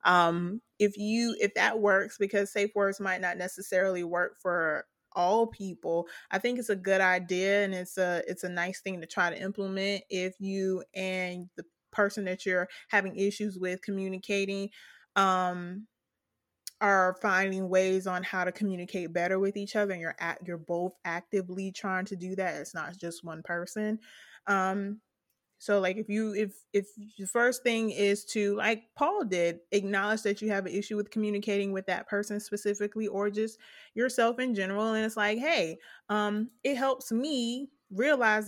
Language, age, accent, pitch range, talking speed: English, 20-39, American, 185-215 Hz, 175 wpm